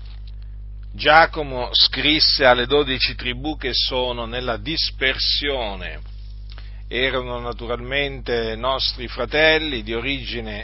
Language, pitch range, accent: Italian, 100-140 Hz, native